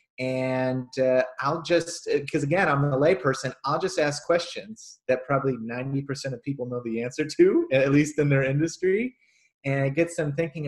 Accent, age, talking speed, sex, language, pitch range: American, 30-49, 180 wpm, male, English, 120-155 Hz